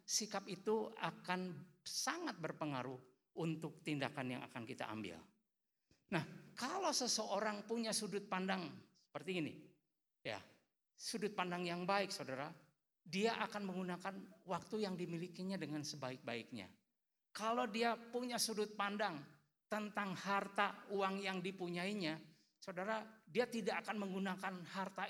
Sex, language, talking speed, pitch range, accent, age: male, Indonesian, 115 wpm, 145-210 Hz, native, 50-69